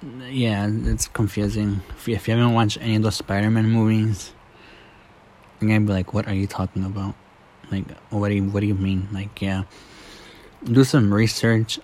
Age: 20-39